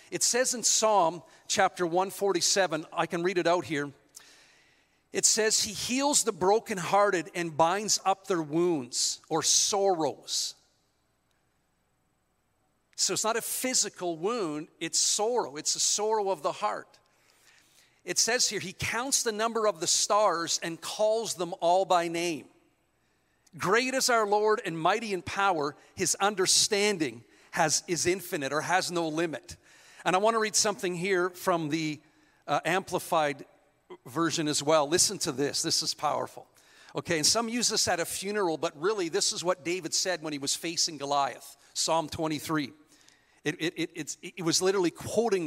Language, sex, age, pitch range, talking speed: English, male, 50-69, 155-200 Hz, 160 wpm